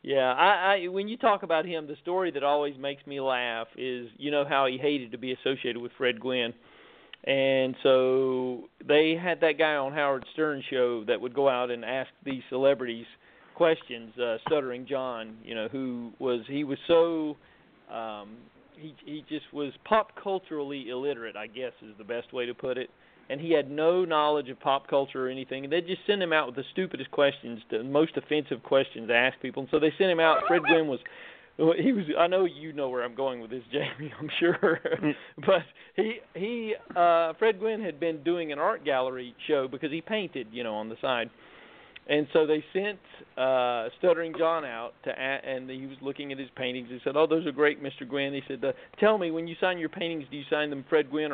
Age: 40-59